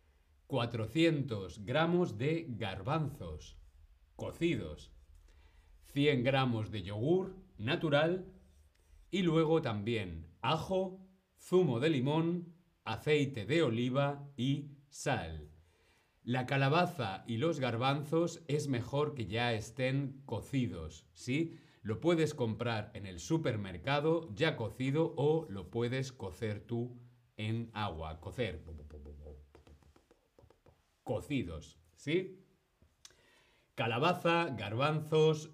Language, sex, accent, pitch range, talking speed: Spanish, male, Spanish, 95-155 Hz, 90 wpm